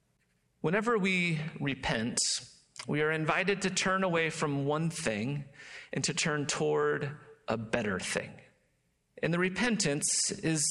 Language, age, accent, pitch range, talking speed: English, 40-59, American, 150-185 Hz, 130 wpm